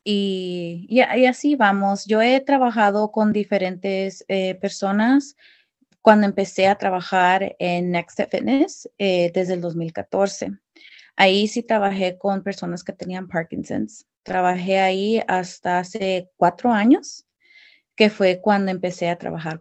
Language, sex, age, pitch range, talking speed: English, female, 30-49, 185-215 Hz, 135 wpm